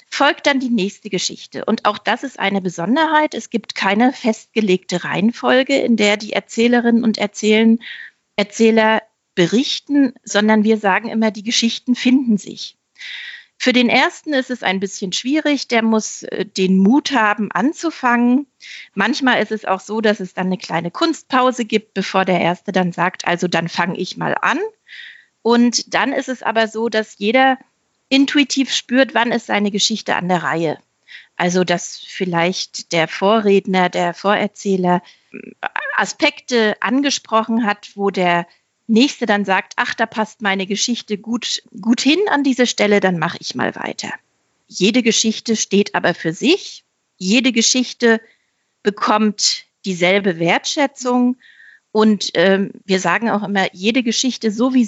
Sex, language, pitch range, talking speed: female, German, 195-250 Hz, 150 wpm